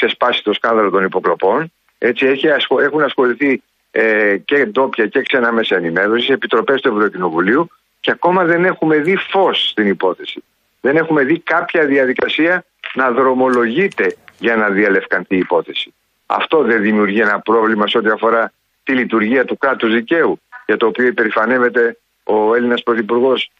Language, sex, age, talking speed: Greek, male, 50-69, 145 wpm